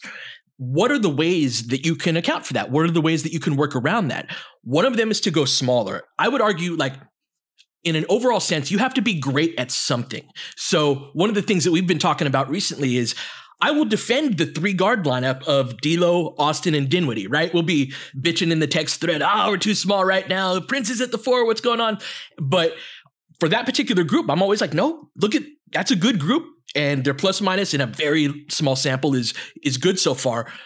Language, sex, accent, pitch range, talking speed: English, male, American, 140-200 Hz, 230 wpm